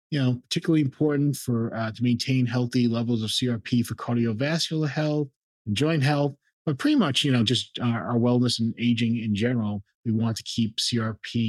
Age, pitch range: 30-49, 110-130 Hz